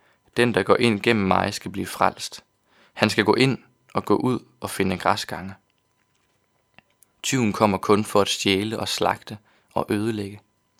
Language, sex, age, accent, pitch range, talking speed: Danish, male, 20-39, native, 100-110 Hz, 160 wpm